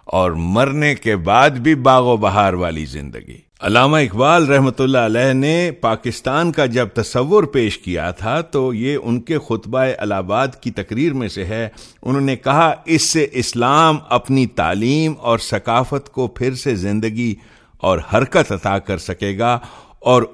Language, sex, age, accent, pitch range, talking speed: English, male, 50-69, Indian, 105-135 Hz, 135 wpm